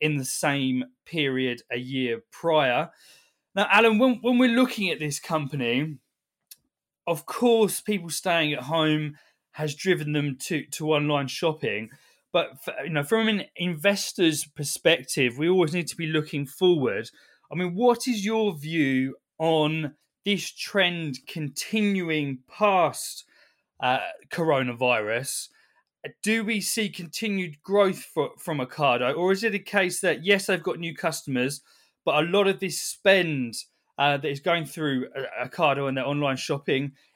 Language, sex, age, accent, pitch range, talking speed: English, male, 20-39, British, 145-185 Hz, 140 wpm